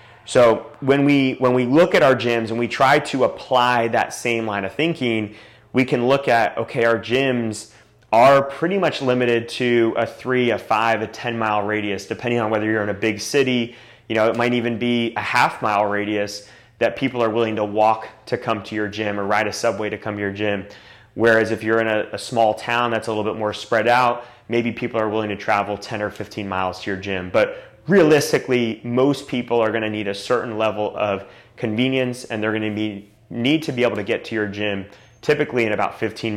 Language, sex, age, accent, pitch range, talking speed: English, male, 30-49, American, 105-125 Hz, 215 wpm